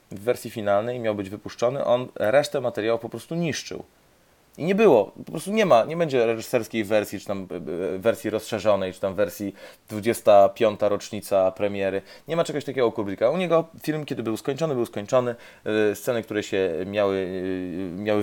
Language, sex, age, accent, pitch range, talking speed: Polish, male, 30-49, native, 100-125 Hz, 170 wpm